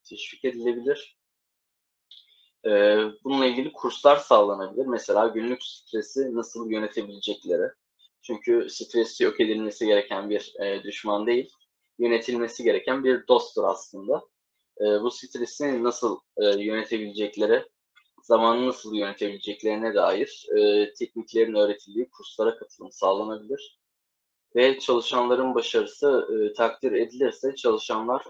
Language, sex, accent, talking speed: Turkish, male, native, 90 wpm